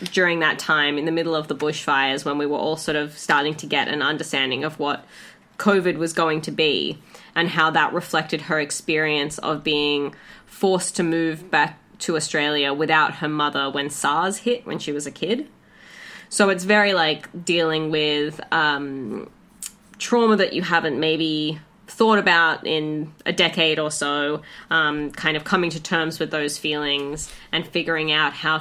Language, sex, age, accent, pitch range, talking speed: English, female, 20-39, Australian, 150-190 Hz, 175 wpm